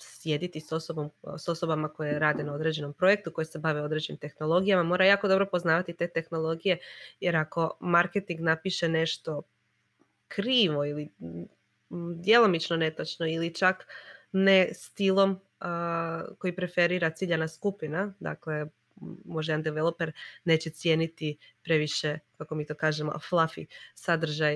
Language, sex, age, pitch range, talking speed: Croatian, female, 20-39, 155-180 Hz, 125 wpm